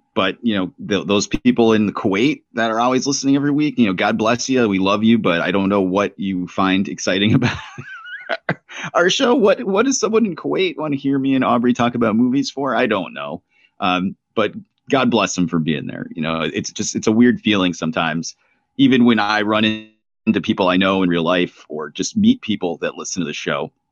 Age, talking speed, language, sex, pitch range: 30-49, 225 wpm, English, male, 95-135 Hz